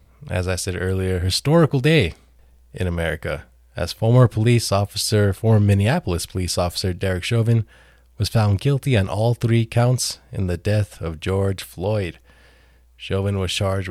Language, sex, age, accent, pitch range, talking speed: English, male, 20-39, American, 90-110 Hz, 145 wpm